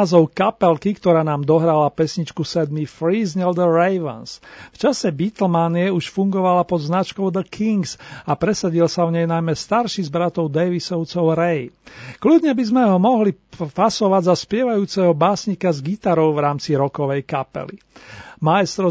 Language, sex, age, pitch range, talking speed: Slovak, male, 40-59, 160-190 Hz, 145 wpm